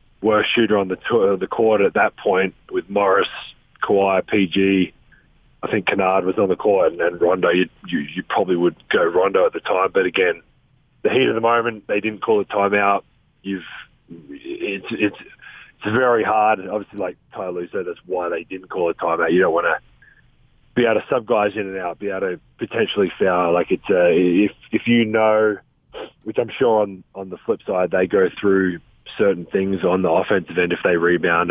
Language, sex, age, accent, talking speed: English, male, 30-49, Australian, 205 wpm